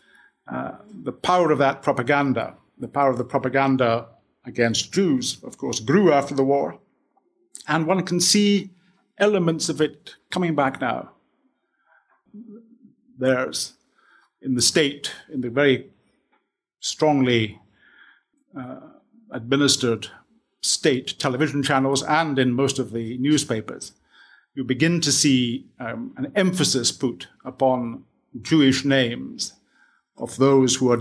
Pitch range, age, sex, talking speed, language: 120-150 Hz, 50-69, male, 120 wpm, English